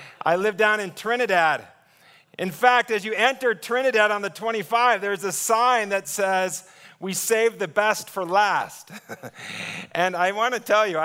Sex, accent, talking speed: male, American, 170 wpm